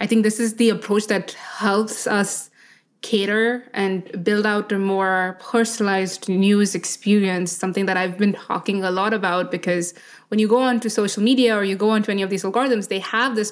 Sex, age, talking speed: female, 20-39, 195 wpm